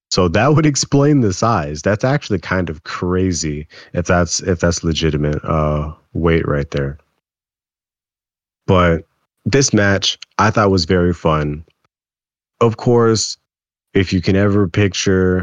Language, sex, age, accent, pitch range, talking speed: English, male, 30-49, American, 90-115 Hz, 135 wpm